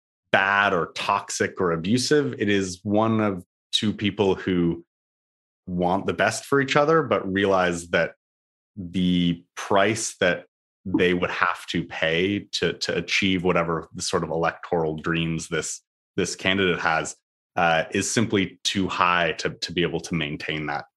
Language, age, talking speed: English, 30-49, 155 wpm